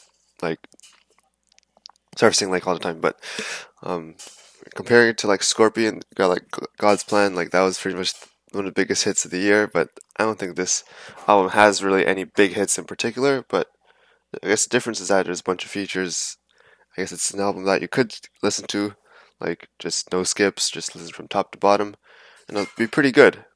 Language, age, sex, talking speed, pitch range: English, 20-39, male, 205 wpm, 90-110 Hz